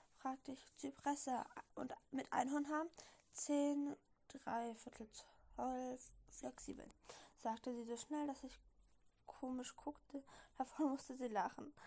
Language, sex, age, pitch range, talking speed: German, female, 10-29, 250-290 Hz, 115 wpm